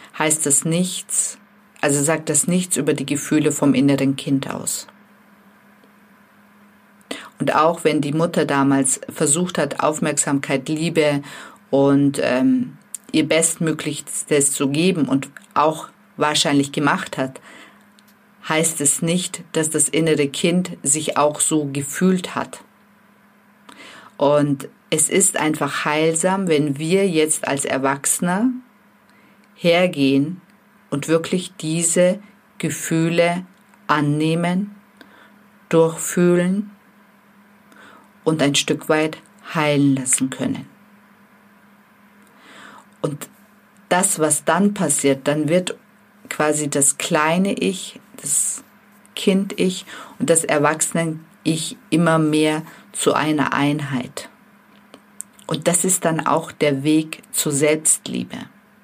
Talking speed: 105 wpm